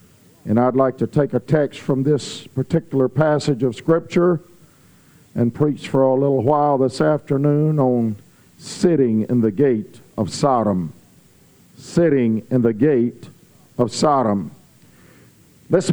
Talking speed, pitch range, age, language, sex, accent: 130 wpm, 145-205 Hz, 50-69, English, male, American